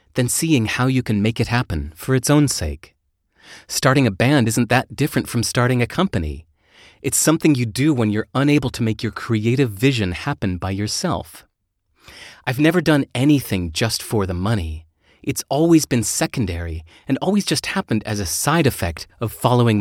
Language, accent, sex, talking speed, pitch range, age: English, American, male, 180 wpm, 95-135 Hz, 30-49